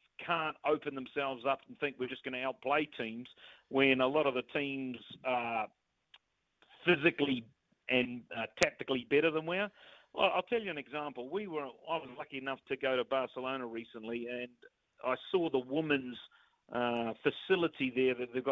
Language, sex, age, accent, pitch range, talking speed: English, male, 40-59, Australian, 130-160 Hz, 175 wpm